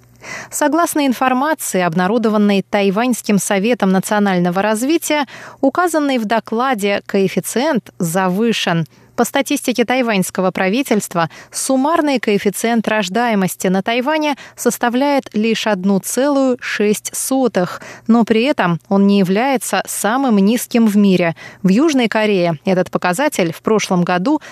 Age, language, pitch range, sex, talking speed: 20-39, Russian, 195-260 Hz, female, 105 wpm